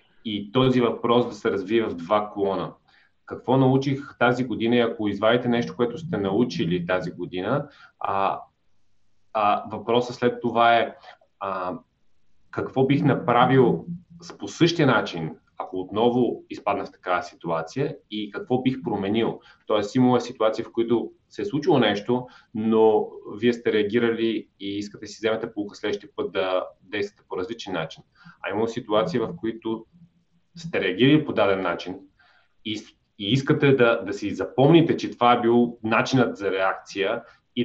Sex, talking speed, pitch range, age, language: male, 155 wpm, 105-125 Hz, 30-49, Bulgarian